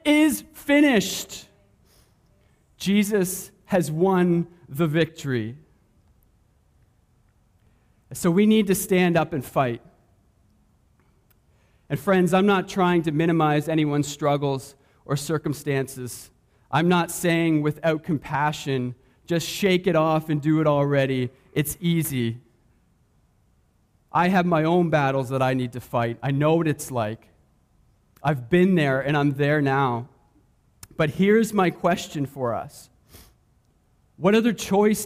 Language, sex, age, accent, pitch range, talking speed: English, male, 40-59, American, 140-205 Hz, 125 wpm